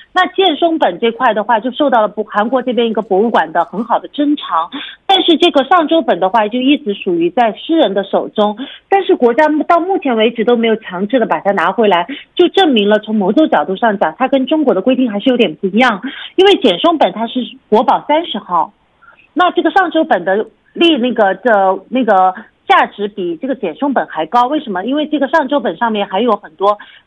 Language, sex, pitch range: Korean, female, 205-300 Hz